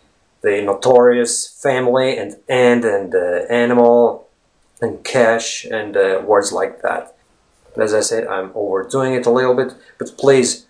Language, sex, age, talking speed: English, male, 30-49, 145 wpm